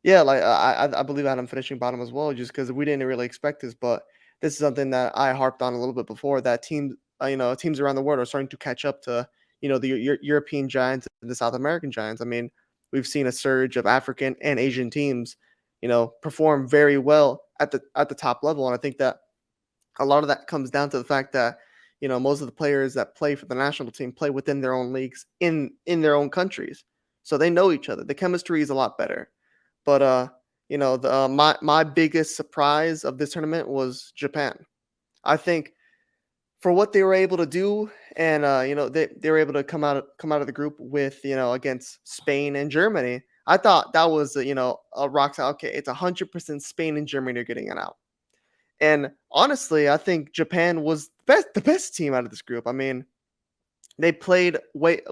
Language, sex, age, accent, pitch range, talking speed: English, male, 20-39, American, 130-155 Hz, 225 wpm